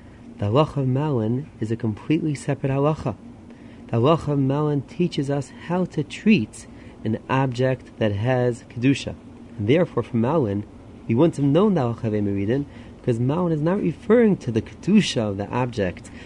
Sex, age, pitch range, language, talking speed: male, 30-49, 115-140 Hz, English, 170 wpm